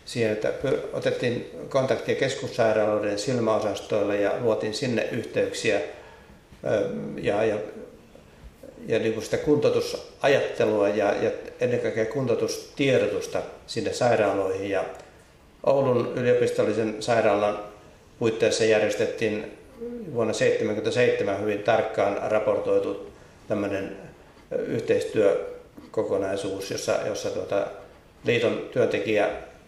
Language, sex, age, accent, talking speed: Finnish, male, 60-79, native, 80 wpm